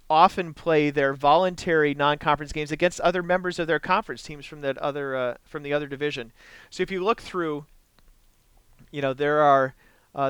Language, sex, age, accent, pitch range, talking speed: English, male, 40-59, American, 125-155 Hz, 180 wpm